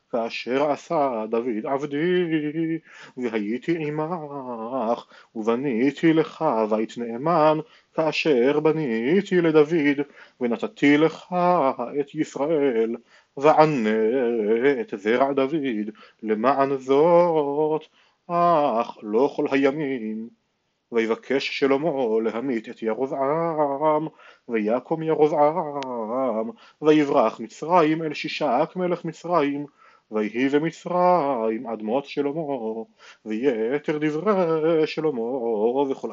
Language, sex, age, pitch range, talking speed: Hebrew, male, 30-49, 120-155 Hz, 80 wpm